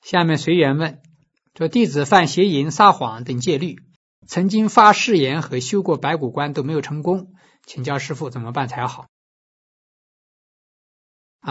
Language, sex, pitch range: Chinese, male, 140-185 Hz